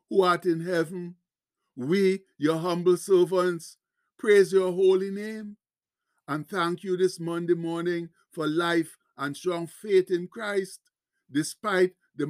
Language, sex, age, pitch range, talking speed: English, male, 60-79, 170-205 Hz, 130 wpm